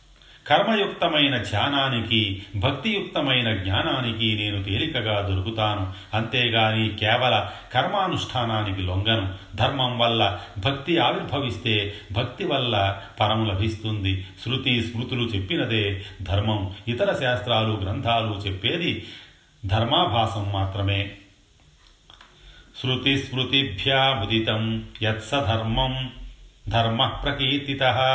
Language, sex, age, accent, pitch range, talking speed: Telugu, male, 40-59, native, 100-130 Hz, 70 wpm